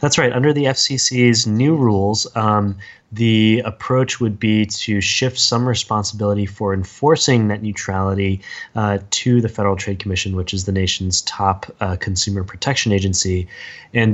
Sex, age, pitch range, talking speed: male, 20-39, 95-110 Hz, 155 wpm